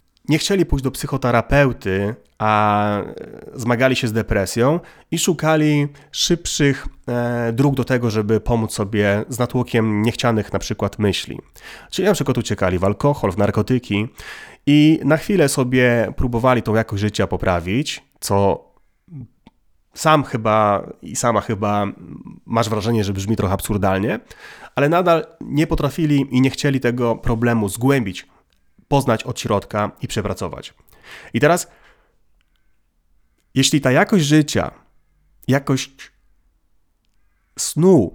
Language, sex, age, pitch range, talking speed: Polish, male, 30-49, 105-145 Hz, 120 wpm